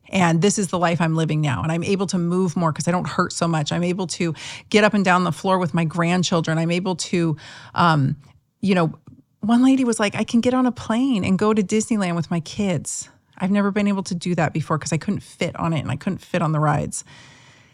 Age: 40-59